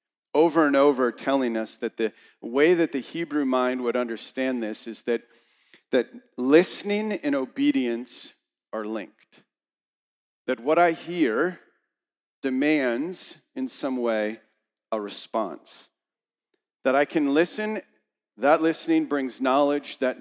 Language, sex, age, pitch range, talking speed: English, male, 40-59, 105-140 Hz, 125 wpm